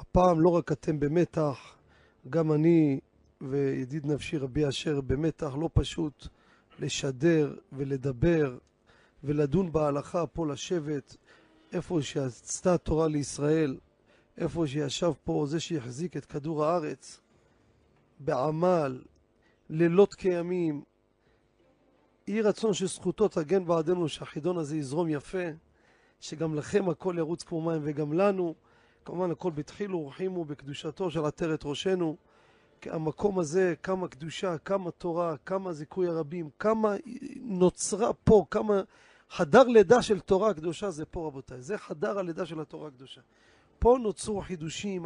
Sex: male